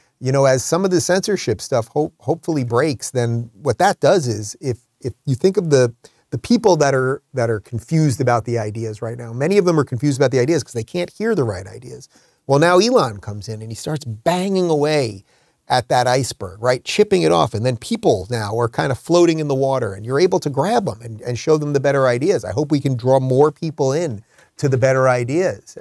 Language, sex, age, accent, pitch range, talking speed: English, male, 30-49, American, 115-150 Hz, 235 wpm